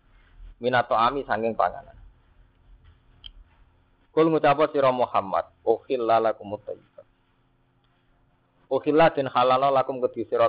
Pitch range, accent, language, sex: 90-135 Hz, native, Indonesian, male